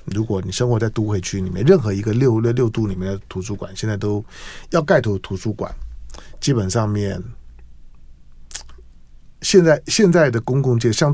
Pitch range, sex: 95-130 Hz, male